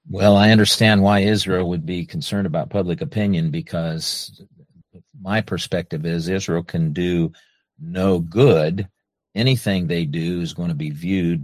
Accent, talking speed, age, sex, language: American, 145 wpm, 50-69, male, English